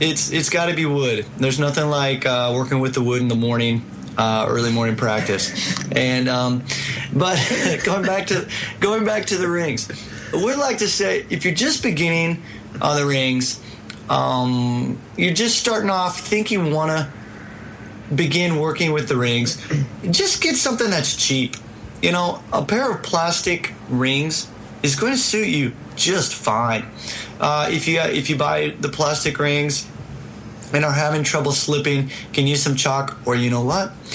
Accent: American